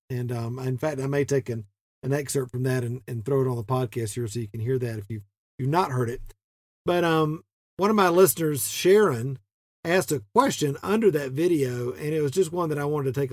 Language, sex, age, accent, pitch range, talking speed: English, male, 50-69, American, 130-175 Hz, 250 wpm